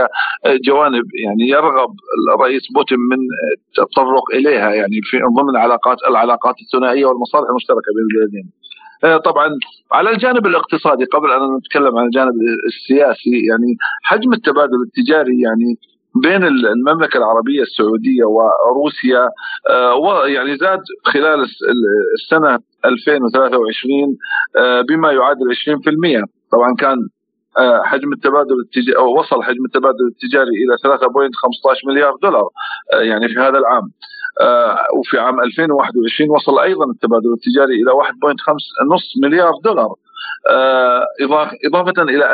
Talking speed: 110 wpm